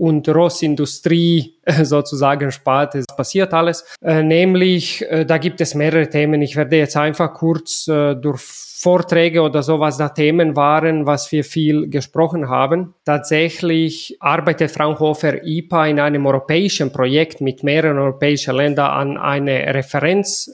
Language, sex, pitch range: German, male, 140-165 Hz